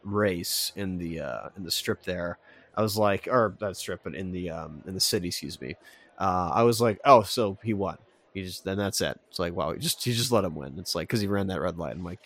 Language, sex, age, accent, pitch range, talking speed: English, male, 20-39, American, 90-115 Hz, 275 wpm